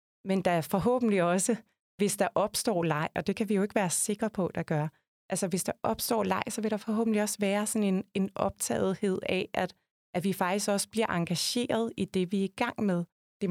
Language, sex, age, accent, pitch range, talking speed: Danish, female, 30-49, native, 170-205 Hz, 220 wpm